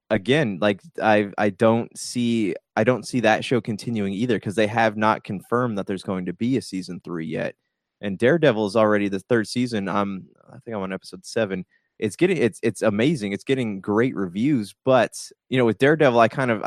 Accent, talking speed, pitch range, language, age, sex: American, 210 wpm, 100-120 Hz, English, 20-39, male